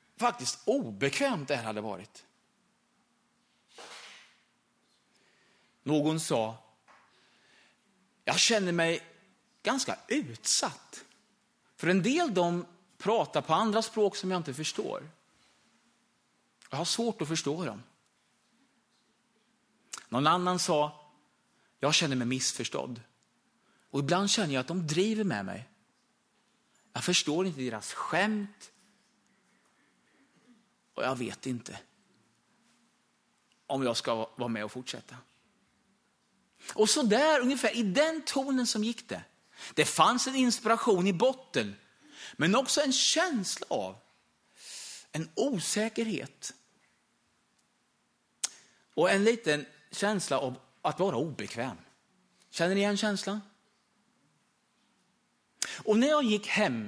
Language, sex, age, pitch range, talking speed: Swedish, male, 30-49, 140-225 Hz, 110 wpm